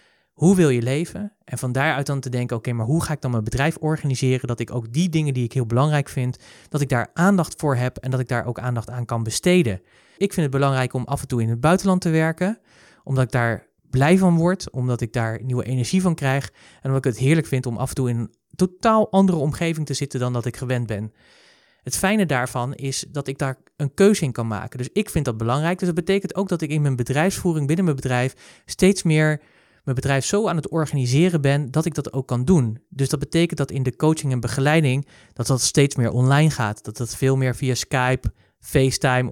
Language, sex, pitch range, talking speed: Dutch, male, 125-165 Hz, 240 wpm